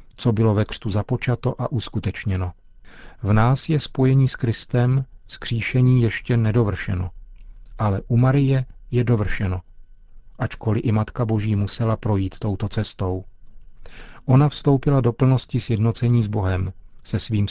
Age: 40-59